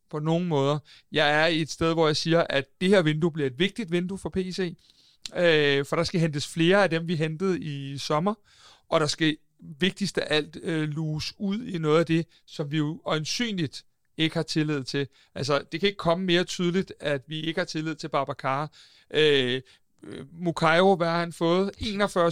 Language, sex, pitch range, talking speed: Danish, male, 150-175 Hz, 200 wpm